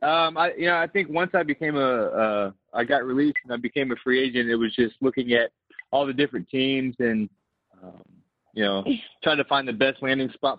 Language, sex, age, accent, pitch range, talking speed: English, male, 20-39, American, 115-135 Hz, 225 wpm